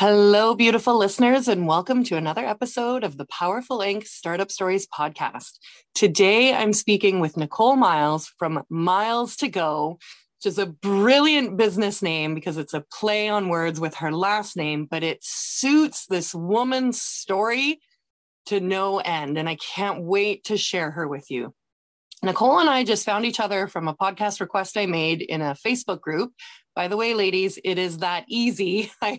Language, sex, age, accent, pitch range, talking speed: English, female, 30-49, American, 180-250 Hz, 175 wpm